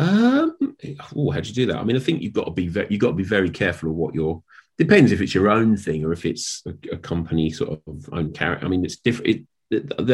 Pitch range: 80-120 Hz